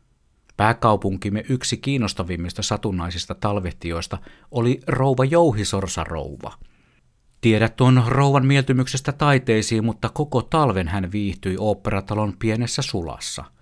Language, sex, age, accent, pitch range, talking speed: Finnish, male, 50-69, native, 95-120 Hz, 95 wpm